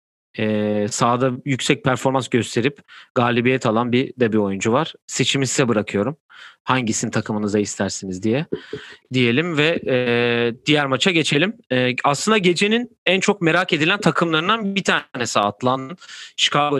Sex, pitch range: male, 115-160 Hz